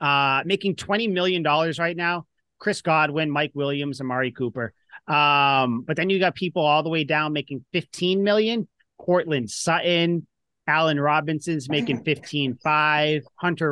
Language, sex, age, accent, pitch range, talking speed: English, male, 30-49, American, 140-175 Hz, 150 wpm